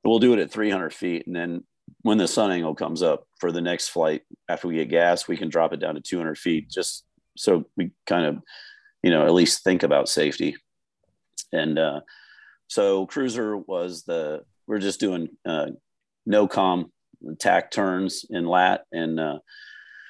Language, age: English, 40-59